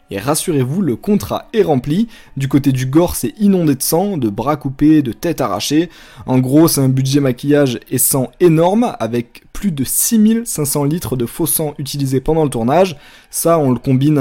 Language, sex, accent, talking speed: French, male, French, 190 wpm